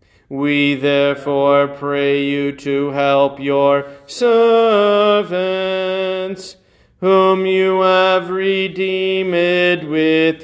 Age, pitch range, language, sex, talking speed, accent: 40-59, 140-185 Hz, English, male, 75 wpm, American